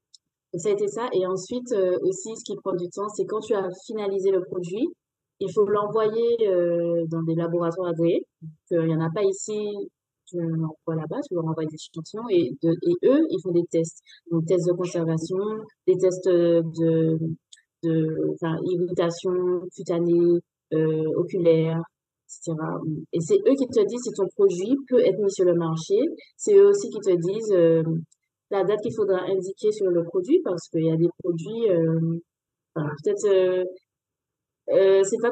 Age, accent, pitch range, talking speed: 20-39, French, 170-220 Hz, 185 wpm